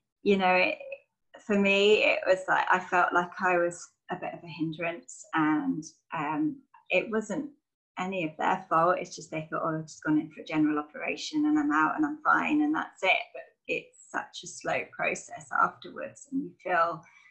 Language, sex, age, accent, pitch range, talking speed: English, female, 20-39, British, 170-275 Hz, 200 wpm